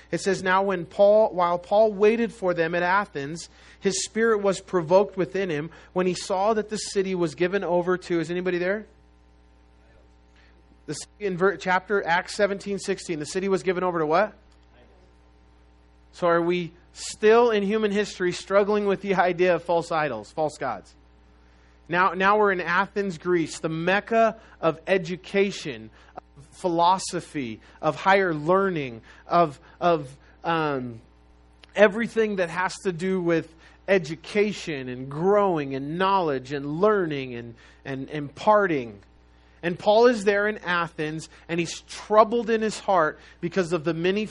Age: 30-49